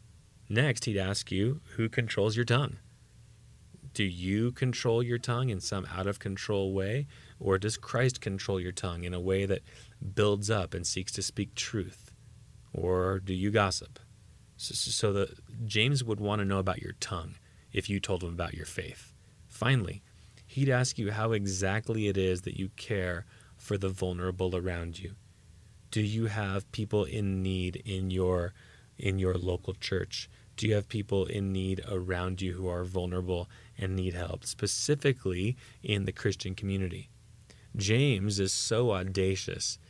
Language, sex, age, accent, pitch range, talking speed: English, male, 30-49, American, 95-115 Hz, 160 wpm